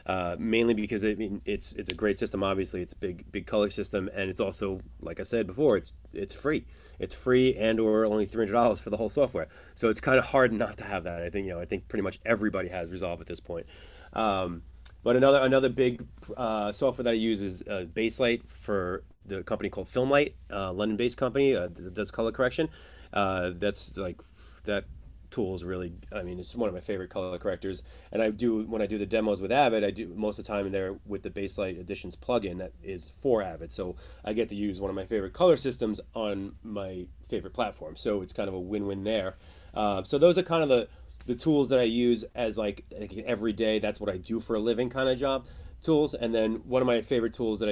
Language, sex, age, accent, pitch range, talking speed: English, male, 30-49, American, 95-115 Hz, 235 wpm